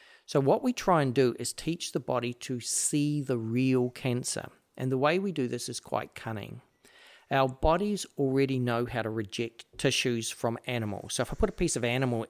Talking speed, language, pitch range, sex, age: 205 wpm, English, 115-140 Hz, male, 40-59